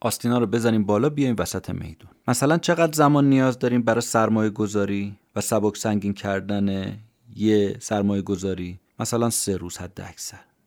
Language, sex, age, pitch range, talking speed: Persian, male, 30-49, 105-135 Hz, 145 wpm